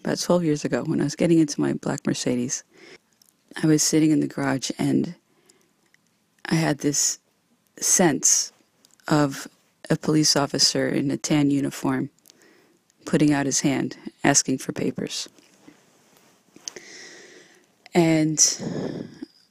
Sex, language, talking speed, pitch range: female, English, 120 wpm, 145-175 Hz